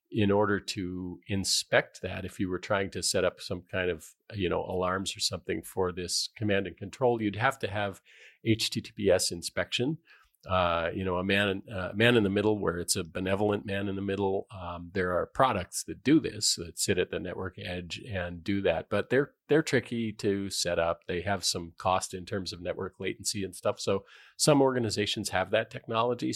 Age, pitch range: 40-59, 90-105 Hz